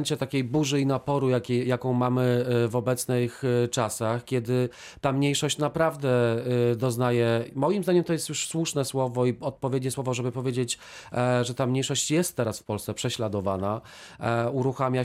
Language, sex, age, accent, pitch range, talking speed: Polish, male, 40-59, native, 120-145 Hz, 145 wpm